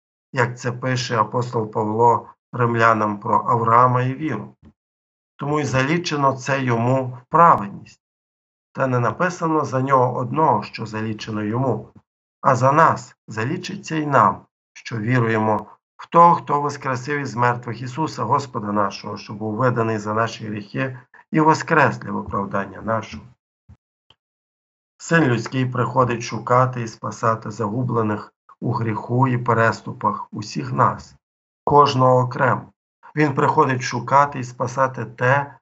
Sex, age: male, 50-69